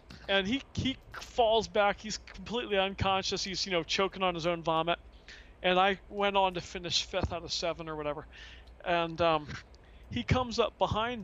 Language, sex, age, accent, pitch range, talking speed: English, male, 40-59, American, 155-195 Hz, 180 wpm